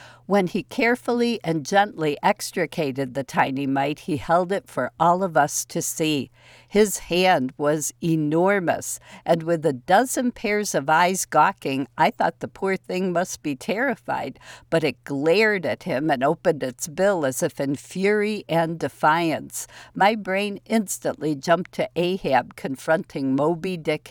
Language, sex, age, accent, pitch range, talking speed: English, female, 60-79, American, 145-200 Hz, 155 wpm